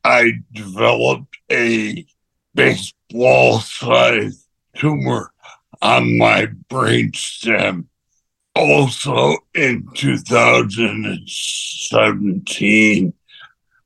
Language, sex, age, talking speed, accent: English, male, 60-79, 50 wpm, American